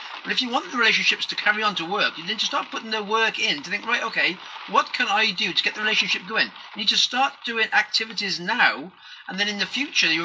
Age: 40-59